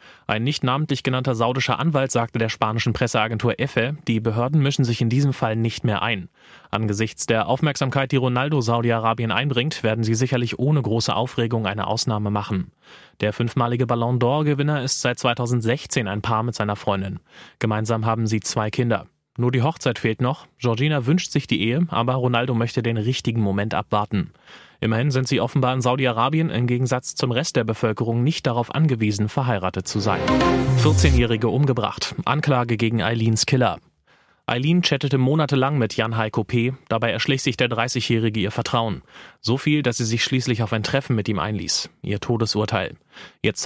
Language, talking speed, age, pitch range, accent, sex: German, 170 wpm, 30-49, 110-130 Hz, German, male